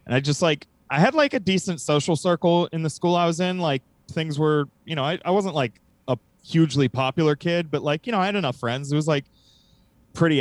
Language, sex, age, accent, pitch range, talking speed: English, male, 20-39, American, 120-160 Hz, 240 wpm